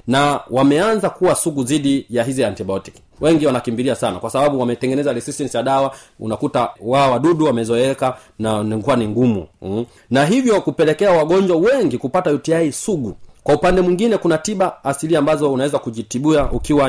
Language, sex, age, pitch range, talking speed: Swahili, male, 30-49, 115-155 Hz, 155 wpm